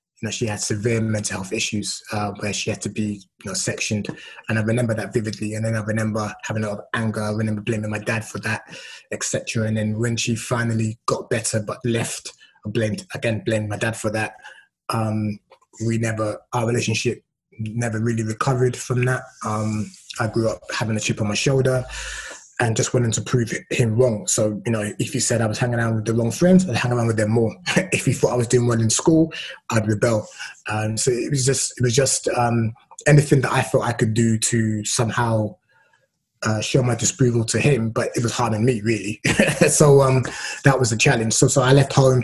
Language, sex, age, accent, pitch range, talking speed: English, male, 20-39, British, 110-125 Hz, 220 wpm